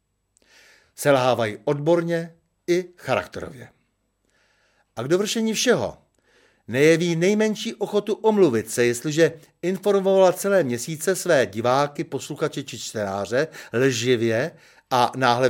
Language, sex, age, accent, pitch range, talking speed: Czech, male, 60-79, native, 120-175 Hz, 95 wpm